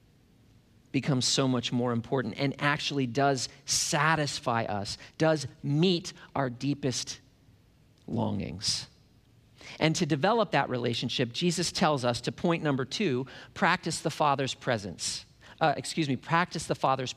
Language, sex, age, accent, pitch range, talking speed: English, male, 40-59, American, 125-175 Hz, 130 wpm